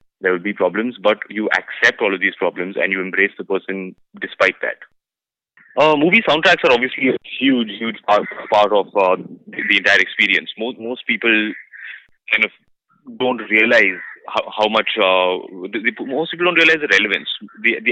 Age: 20-39